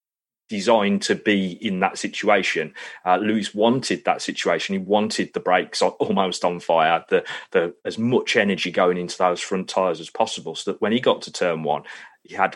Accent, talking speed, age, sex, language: British, 190 wpm, 30-49, male, English